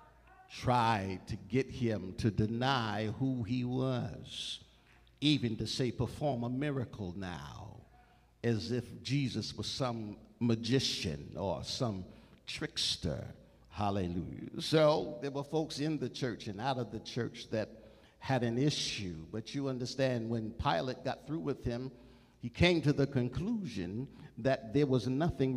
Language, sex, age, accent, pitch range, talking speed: English, male, 60-79, American, 100-130 Hz, 140 wpm